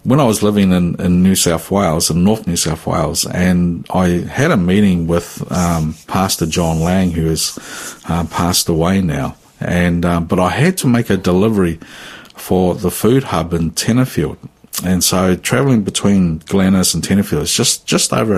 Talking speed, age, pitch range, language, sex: 185 wpm, 50-69, 85-105 Hz, English, male